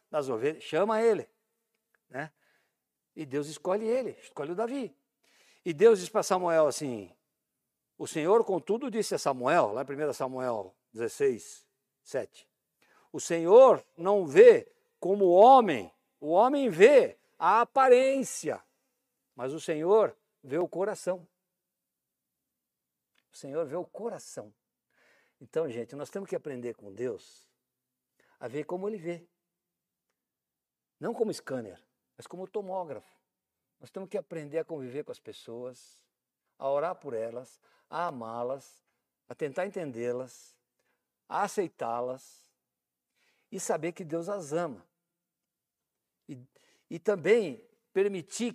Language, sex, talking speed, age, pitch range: Portuguese, male, 125 wpm, 60-79, 150-225 Hz